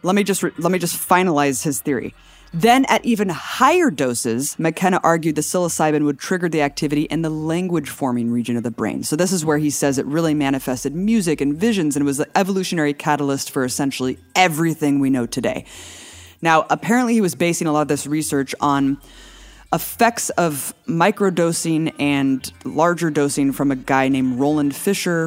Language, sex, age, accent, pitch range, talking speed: English, female, 20-39, American, 140-175 Hz, 180 wpm